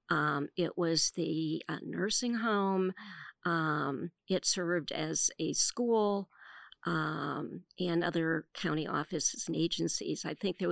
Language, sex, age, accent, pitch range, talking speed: English, female, 50-69, American, 165-195 Hz, 130 wpm